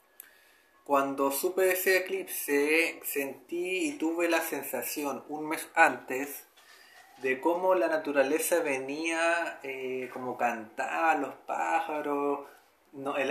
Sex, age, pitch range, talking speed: male, 30-49, 140-170 Hz, 115 wpm